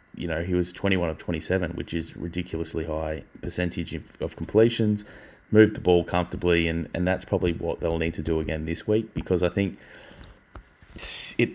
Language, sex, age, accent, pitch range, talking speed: English, male, 20-39, Australian, 85-95 Hz, 175 wpm